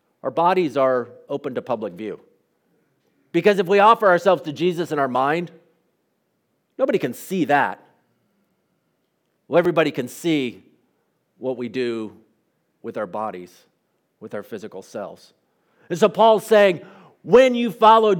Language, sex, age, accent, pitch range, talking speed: English, male, 50-69, American, 135-175 Hz, 140 wpm